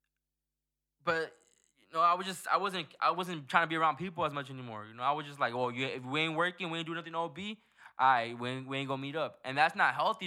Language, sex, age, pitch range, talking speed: English, male, 10-29, 135-175 Hz, 285 wpm